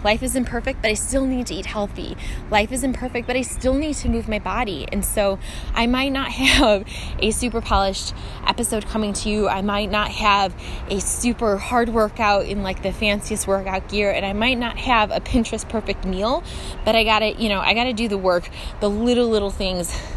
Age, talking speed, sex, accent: 20-39, 215 wpm, female, American